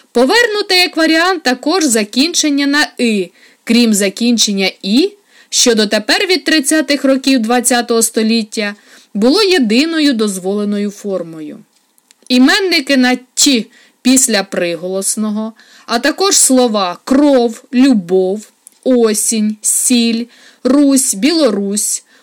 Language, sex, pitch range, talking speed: Ukrainian, female, 215-275 Hz, 95 wpm